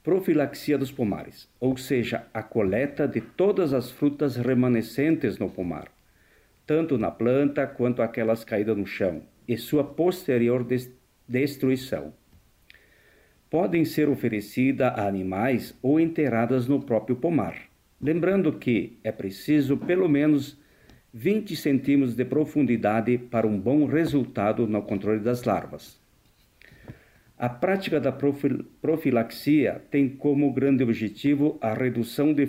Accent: Brazilian